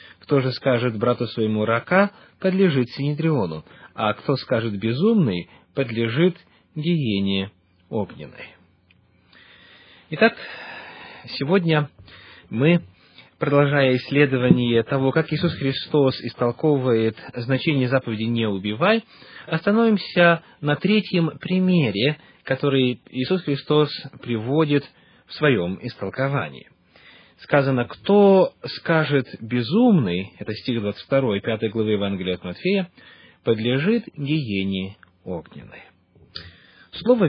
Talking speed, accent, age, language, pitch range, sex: 90 wpm, native, 30-49, Russian, 115-175 Hz, male